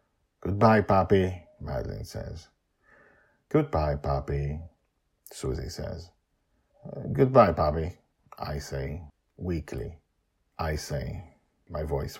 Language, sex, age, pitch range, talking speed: English, male, 50-69, 75-105 Hz, 85 wpm